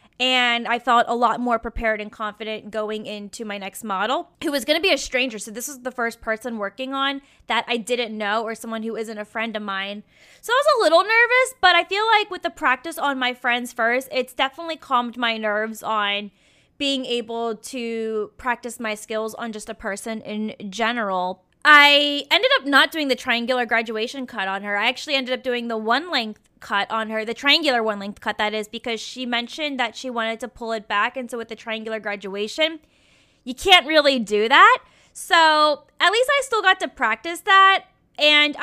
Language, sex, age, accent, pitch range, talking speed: English, female, 20-39, American, 220-275 Hz, 210 wpm